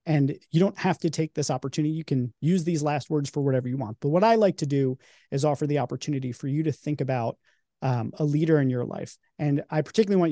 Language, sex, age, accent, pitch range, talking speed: English, male, 30-49, American, 130-160 Hz, 250 wpm